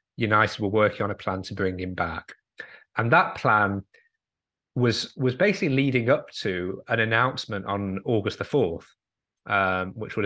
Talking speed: 165 wpm